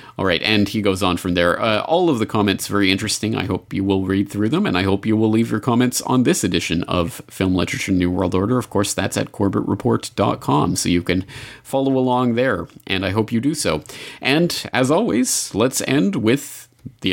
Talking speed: 220 wpm